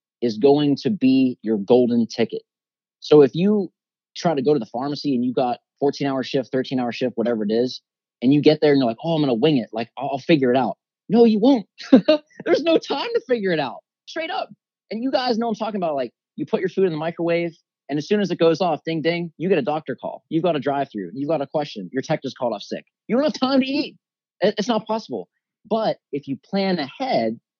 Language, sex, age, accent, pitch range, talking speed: English, male, 30-49, American, 130-195 Hz, 250 wpm